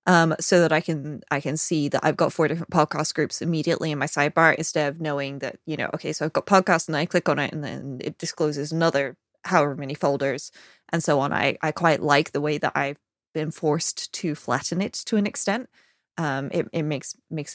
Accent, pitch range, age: American, 150-205 Hz, 20-39